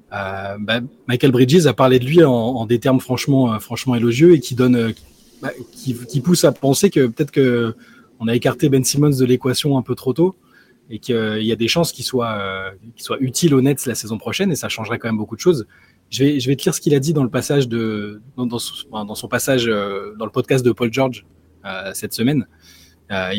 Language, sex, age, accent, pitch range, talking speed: French, male, 20-39, French, 110-135 Hz, 220 wpm